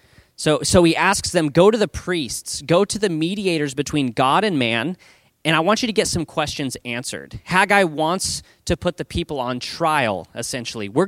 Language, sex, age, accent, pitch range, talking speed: English, male, 30-49, American, 145-190 Hz, 195 wpm